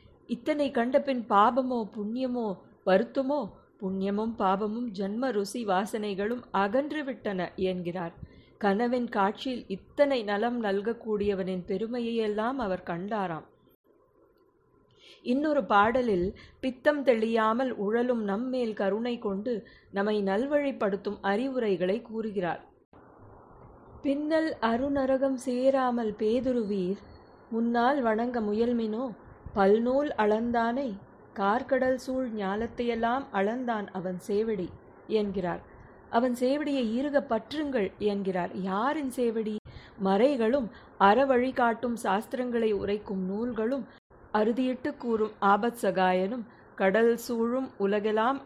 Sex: female